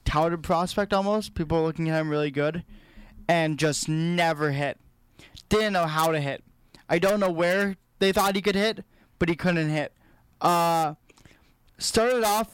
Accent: American